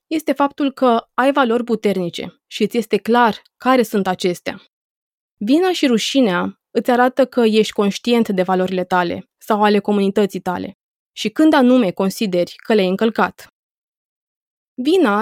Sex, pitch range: female, 205-275 Hz